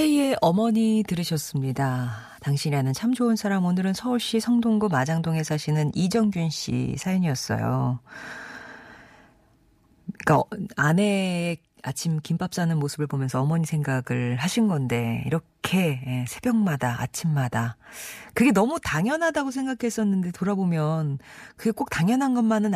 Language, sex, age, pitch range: Korean, female, 40-59, 145-205 Hz